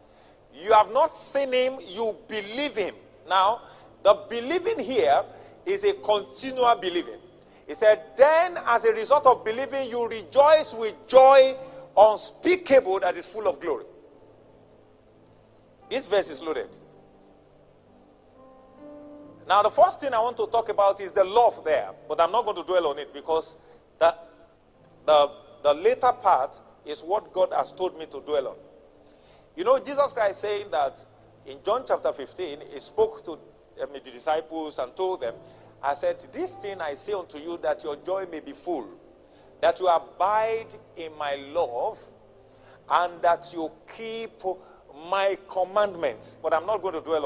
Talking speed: 160 wpm